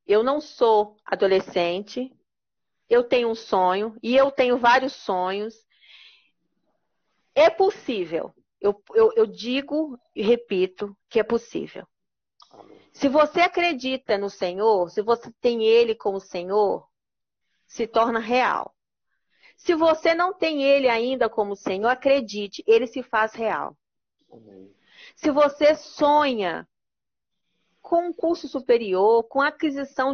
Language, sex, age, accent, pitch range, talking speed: Portuguese, female, 40-59, Brazilian, 220-305 Hz, 120 wpm